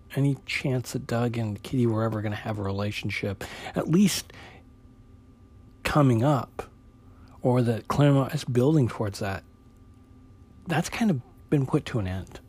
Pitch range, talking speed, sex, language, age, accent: 100-130 Hz, 155 wpm, male, English, 40-59, American